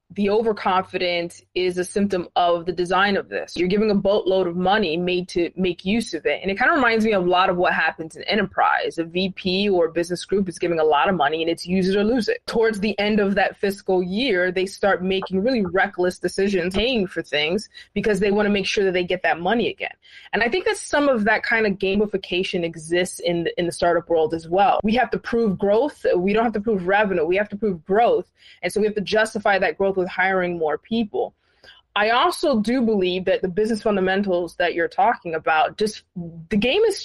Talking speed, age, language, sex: 235 wpm, 20-39, English, female